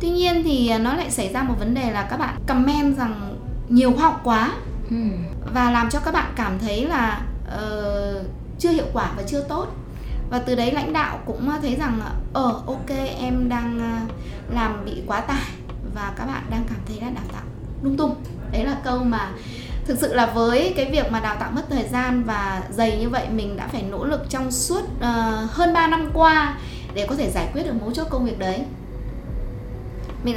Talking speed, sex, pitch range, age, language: 210 wpm, female, 225-290 Hz, 20-39, Vietnamese